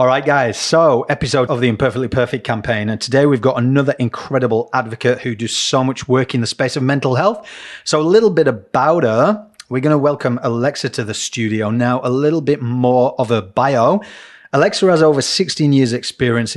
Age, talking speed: 30-49, 200 wpm